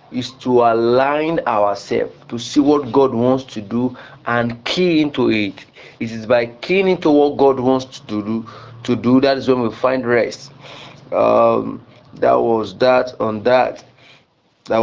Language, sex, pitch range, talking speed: English, male, 115-145 Hz, 160 wpm